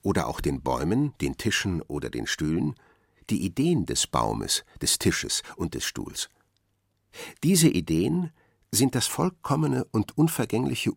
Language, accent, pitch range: German, German, 90-120 Hz